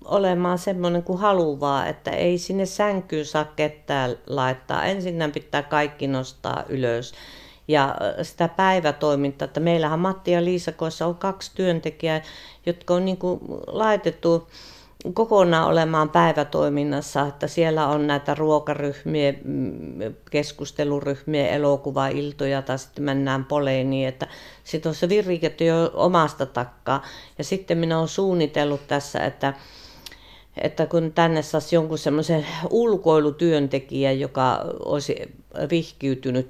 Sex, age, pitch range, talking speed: female, 50-69, 135-165 Hz, 115 wpm